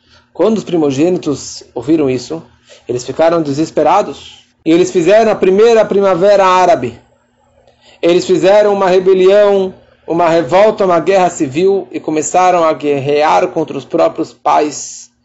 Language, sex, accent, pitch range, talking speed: Portuguese, male, Brazilian, 155-235 Hz, 125 wpm